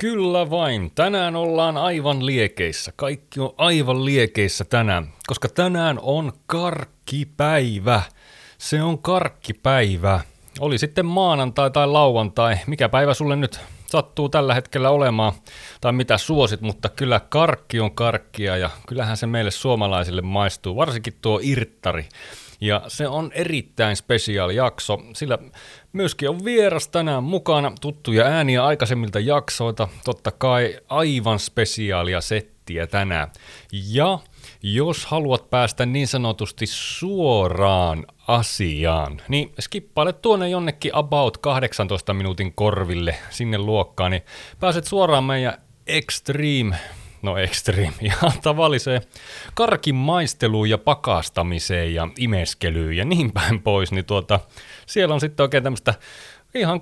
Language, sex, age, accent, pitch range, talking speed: Finnish, male, 30-49, native, 105-145 Hz, 120 wpm